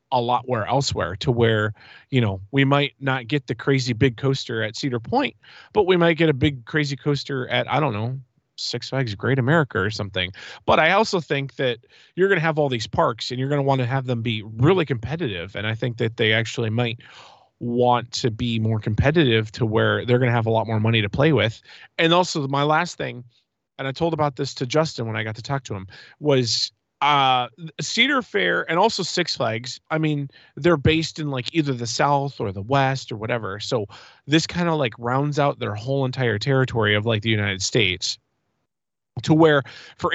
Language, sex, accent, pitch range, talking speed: English, male, American, 115-150 Hz, 220 wpm